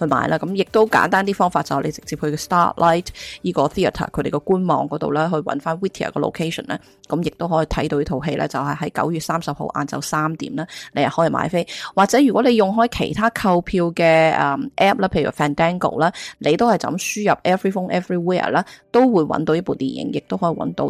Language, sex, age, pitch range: Chinese, female, 20-39, 155-195 Hz